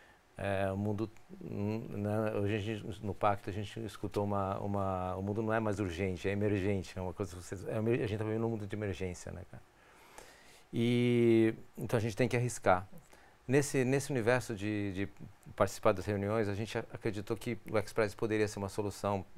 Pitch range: 95-110 Hz